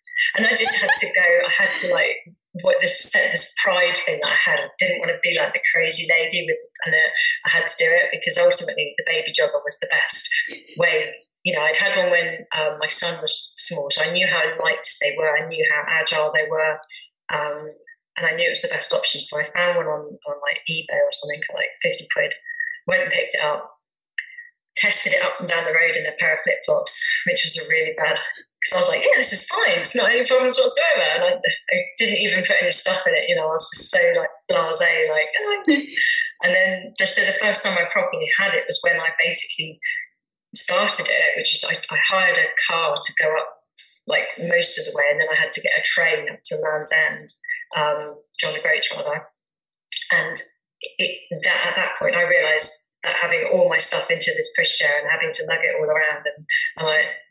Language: English